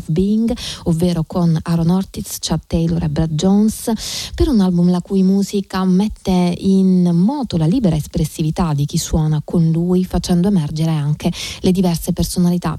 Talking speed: 155 wpm